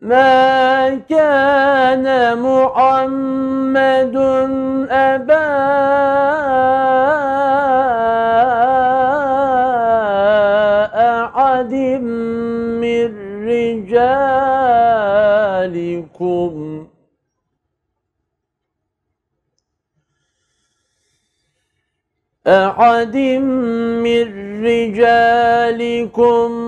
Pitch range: 210-265 Hz